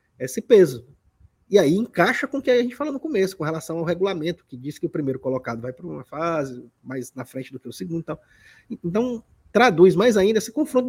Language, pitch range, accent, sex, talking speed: Portuguese, 140-200 Hz, Brazilian, male, 230 wpm